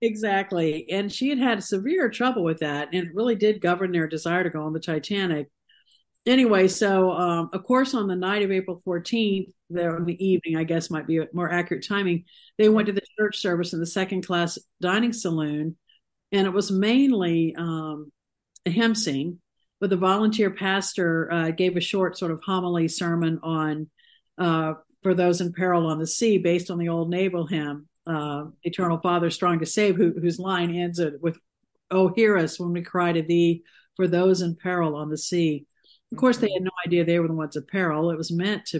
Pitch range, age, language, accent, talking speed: 165-195 Hz, 50-69, English, American, 205 wpm